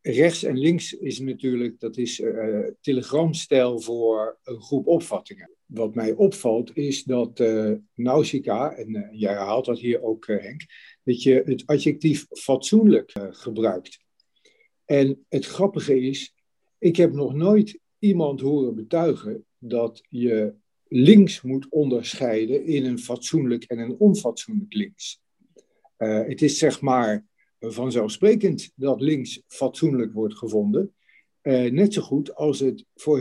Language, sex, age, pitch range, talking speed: Dutch, male, 50-69, 115-150 Hz, 140 wpm